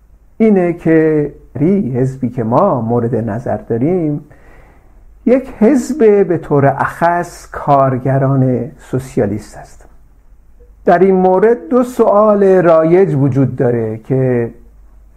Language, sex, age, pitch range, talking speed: Persian, male, 50-69, 115-160 Hz, 100 wpm